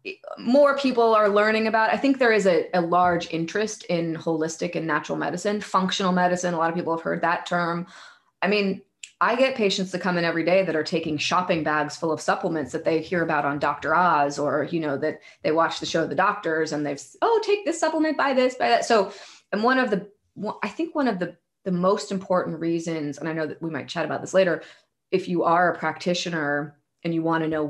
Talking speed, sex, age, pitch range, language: 235 wpm, female, 20-39, 155-190 Hz, English